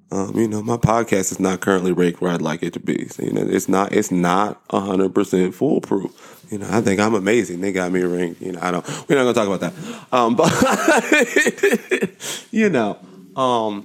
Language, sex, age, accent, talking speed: English, male, 20-39, American, 225 wpm